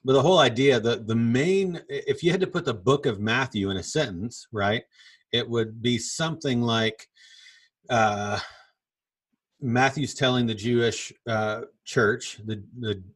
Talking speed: 155 wpm